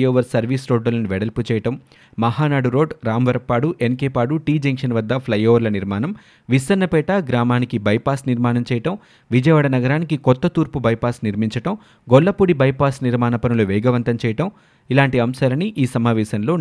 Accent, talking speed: native, 115 wpm